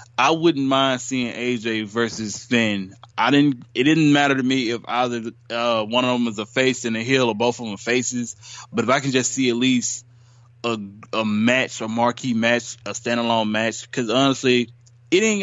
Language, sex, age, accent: English, male, 20-39, American